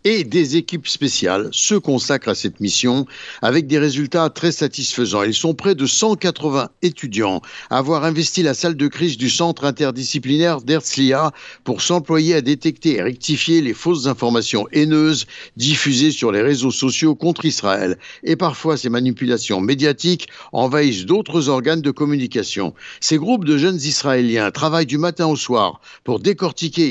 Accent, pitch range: French, 120-170 Hz